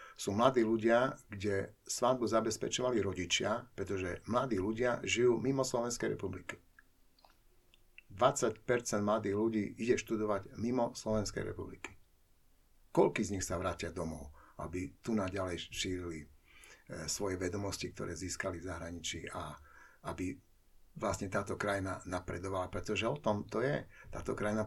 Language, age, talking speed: Slovak, 60-79, 125 wpm